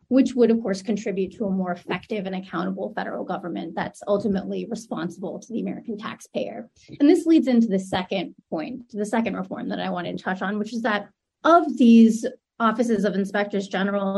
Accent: American